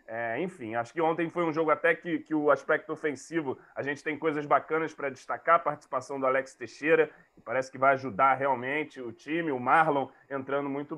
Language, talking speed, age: Portuguese, 195 wpm, 20-39